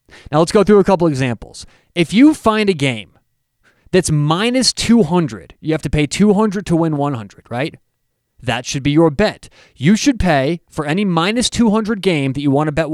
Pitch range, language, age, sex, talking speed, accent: 140-205 Hz, English, 30-49, male, 195 wpm, American